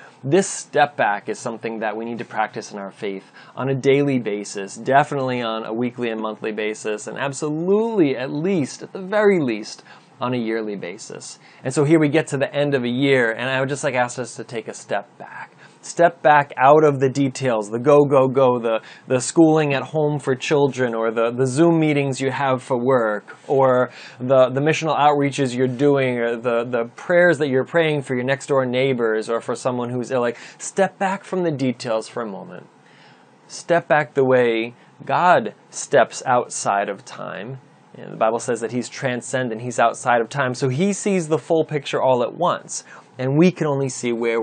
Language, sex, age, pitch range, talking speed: English, male, 20-39, 115-145 Hz, 205 wpm